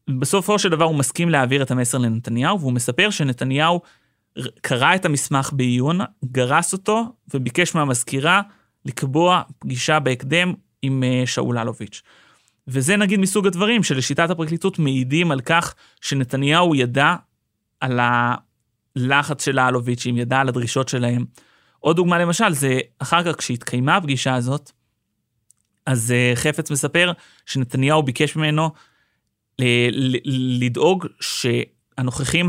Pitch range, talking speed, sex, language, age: 125-160 Hz, 115 wpm, male, Hebrew, 30-49